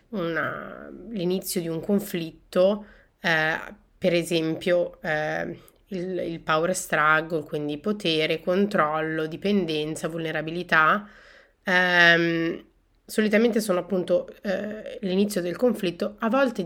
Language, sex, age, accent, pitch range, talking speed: Italian, female, 30-49, native, 165-195 Hz, 95 wpm